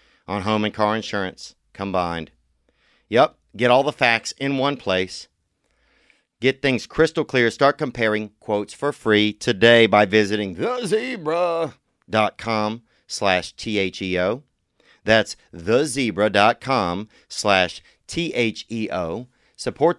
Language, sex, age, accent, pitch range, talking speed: English, male, 40-59, American, 100-120 Hz, 100 wpm